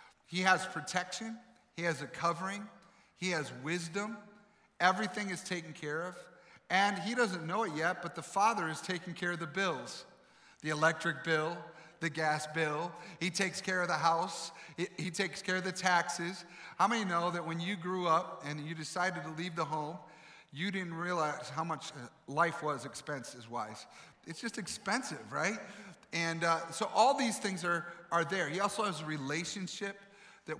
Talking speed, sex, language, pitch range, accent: 180 wpm, male, English, 160-195 Hz, American